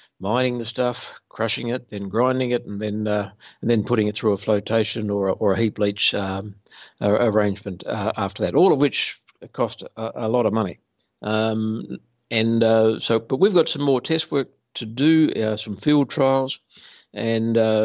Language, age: English, 60-79